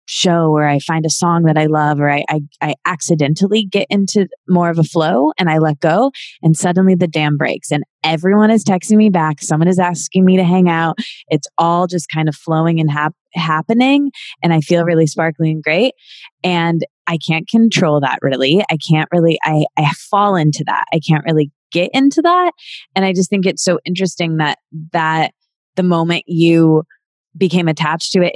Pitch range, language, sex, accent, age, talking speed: 155-190 Hz, English, female, American, 20-39, 200 wpm